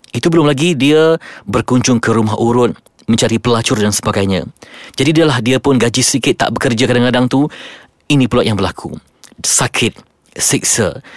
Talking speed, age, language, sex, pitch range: 150 wpm, 30-49, Malay, male, 115-145 Hz